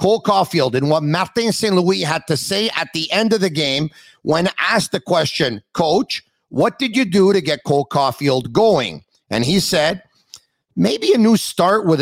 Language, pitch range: English, 150-205 Hz